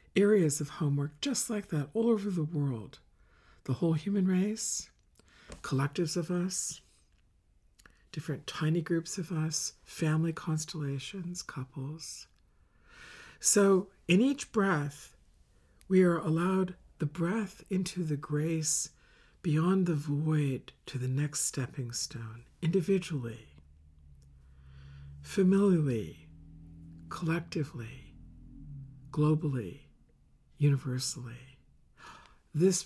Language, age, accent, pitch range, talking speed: English, 50-69, American, 130-185 Hz, 95 wpm